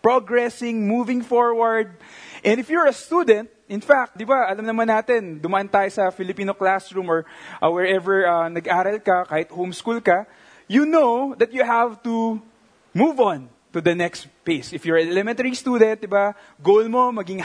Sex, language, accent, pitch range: male, English, Filipino, 190-245 Hz